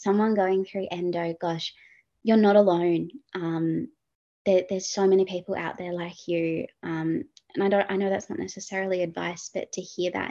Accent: Australian